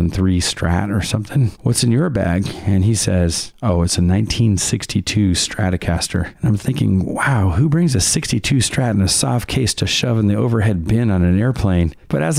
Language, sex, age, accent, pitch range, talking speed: English, male, 40-59, American, 95-115 Hz, 195 wpm